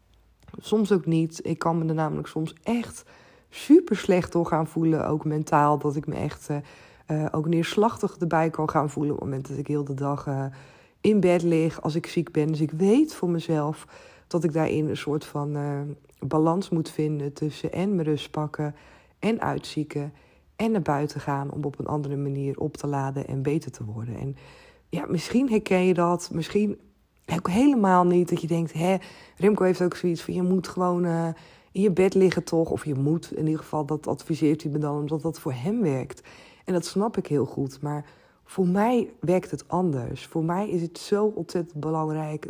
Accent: Dutch